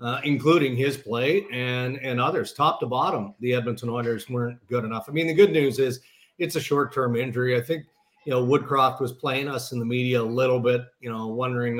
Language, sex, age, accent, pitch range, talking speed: English, male, 40-59, American, 120-145 Hz, 220 wpm